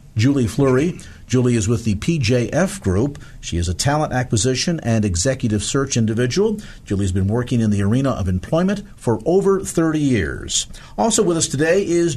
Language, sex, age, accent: English, male, 50-69, American